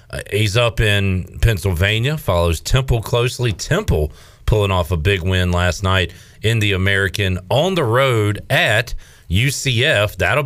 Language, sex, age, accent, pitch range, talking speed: English, male, 40-59, American, 90-115 Hz, 140 wpm